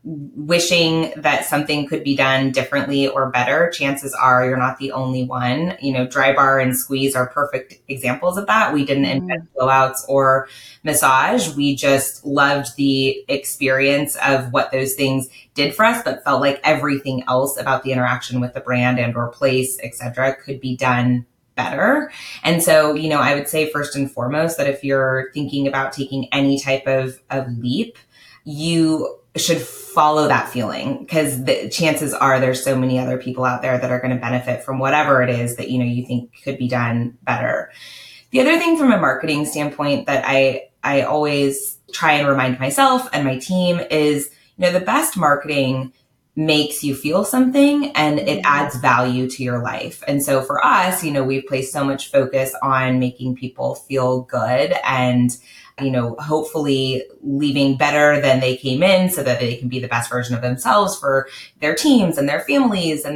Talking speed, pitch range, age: 185 wpm, 130-150 Hz, 20-39